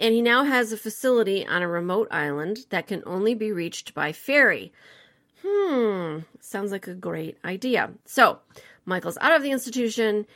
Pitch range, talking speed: 170-250 Hz, 170 wpm